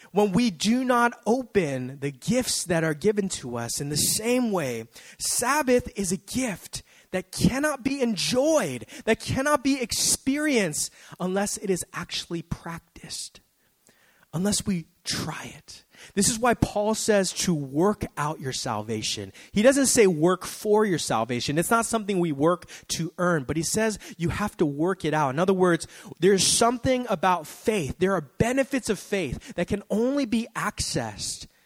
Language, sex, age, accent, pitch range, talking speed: English, male, 30-49, American, 150-215 Hz, 165 wpm